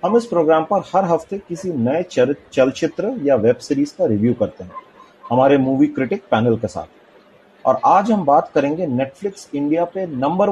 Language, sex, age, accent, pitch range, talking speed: Hindi, male, 30-49, native, 130-180 Hz, 185 wpm